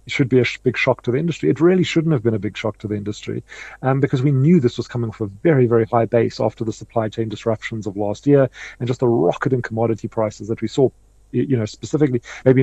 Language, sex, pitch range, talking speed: English, male, 110-130 Hz, 265 wpm